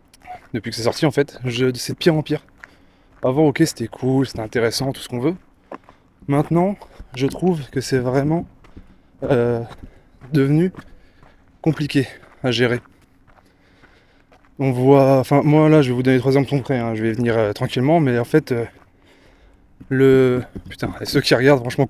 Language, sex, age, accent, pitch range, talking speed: French, male, 20-39, French, 100-140 Hz, 170 wpm